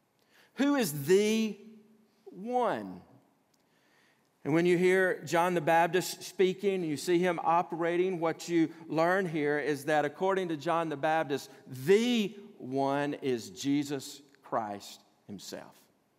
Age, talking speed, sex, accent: 50-69, 120 wpm, male, American